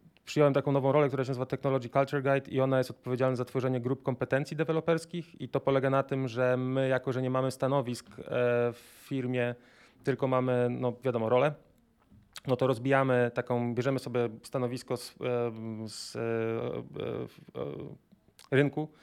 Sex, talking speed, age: male, 150 wpm, 30-49